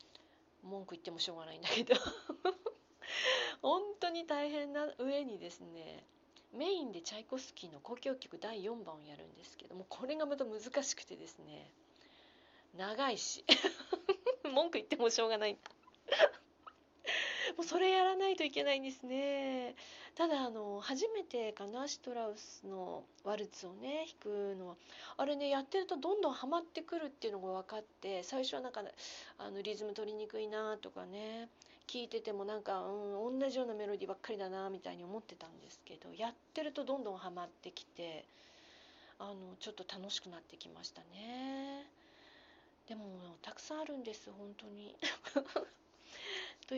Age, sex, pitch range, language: 40-59, female, 210-310 Hz, Japanese